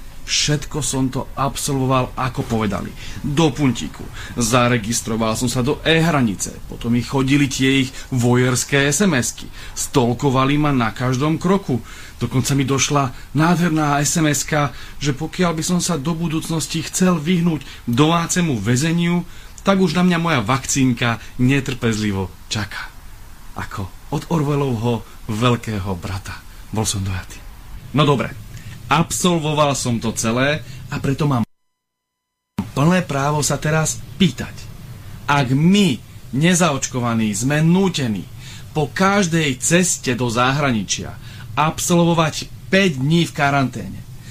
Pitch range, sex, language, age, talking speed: 120-160 Hz, male, Slovak, 30-49, 115 wpm